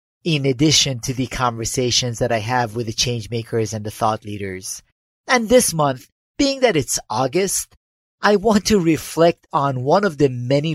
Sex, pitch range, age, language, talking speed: male, 115-145 Hz, 40-59, English, 175 wpm